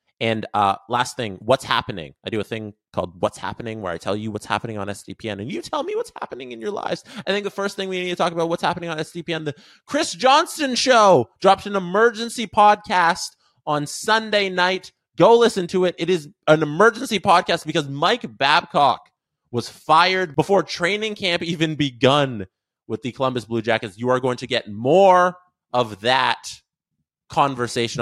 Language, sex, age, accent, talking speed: English, male, 20-39, American, 190 wpm